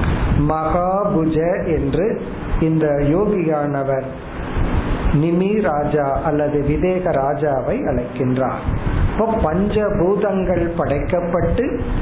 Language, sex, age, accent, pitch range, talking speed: Tamil, male, 50-69, native, 150-195 Hz, 50 wpm